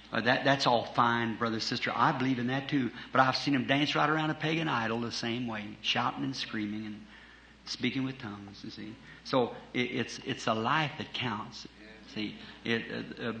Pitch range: 110-135 Hz